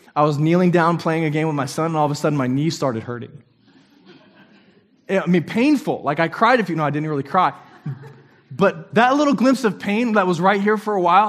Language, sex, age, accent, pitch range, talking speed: English, male, 20-39, American, 140-195 Hz, 240 wpm